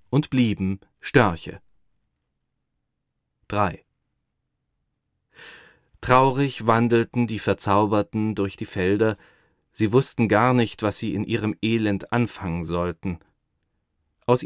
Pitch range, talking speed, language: 100-125 Hz, 95 wpm, Arabic